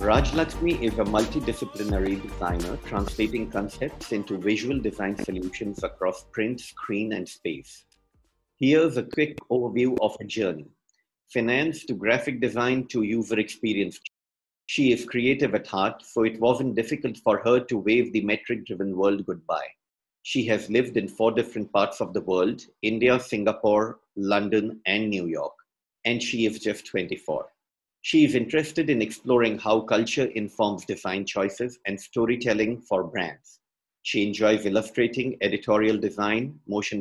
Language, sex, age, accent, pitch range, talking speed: English, male, 50-69, Indian, 105-125 Hz, 145 wpm